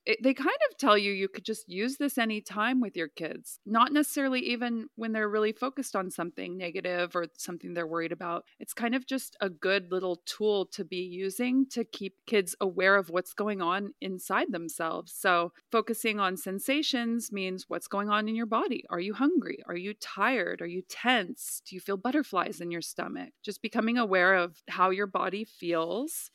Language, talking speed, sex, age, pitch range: English, 195 wpm, female, 30-49, 180-230 Hz